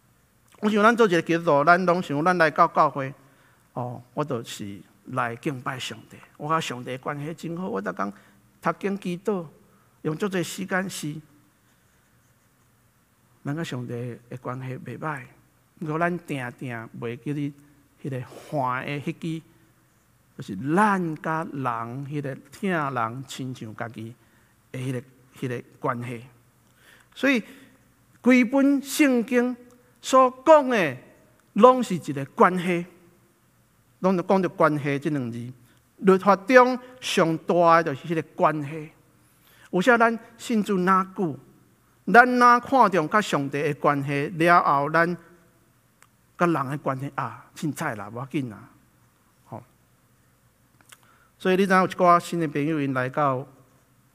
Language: Chinese